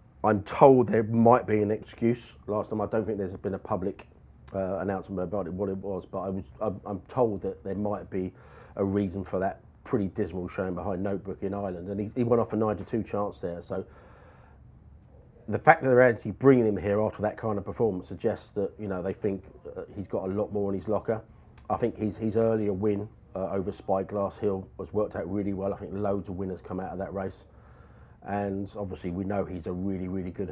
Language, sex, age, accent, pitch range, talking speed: English, male, 40-59, British, 95-105 Hz, 225 wpm